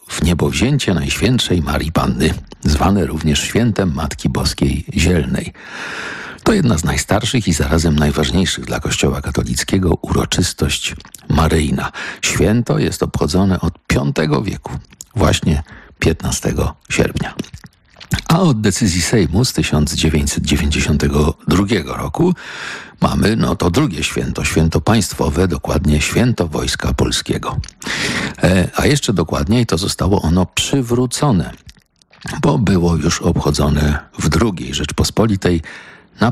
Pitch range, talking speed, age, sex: 75-100 Hz, 110 wpm, 50-69, male